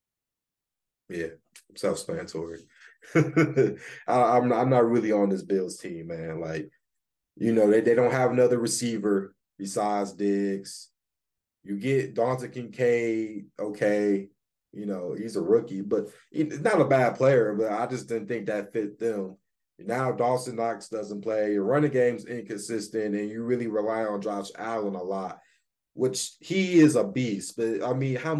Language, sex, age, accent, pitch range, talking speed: English, male, 20-39, American, 100-120 Hz, 160 wpm